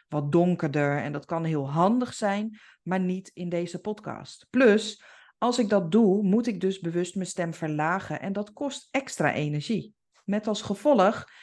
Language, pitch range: Dutch, 190-265 Hz